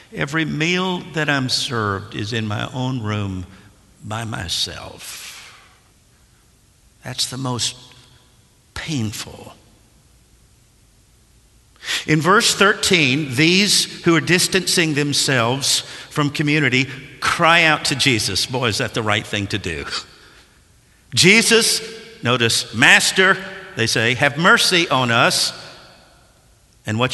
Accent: American